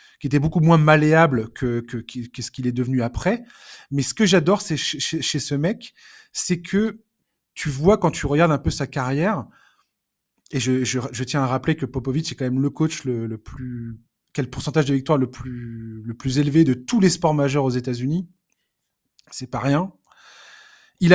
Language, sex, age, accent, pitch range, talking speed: French, male, 20-39, French, 135-180 Hz, 200 wpm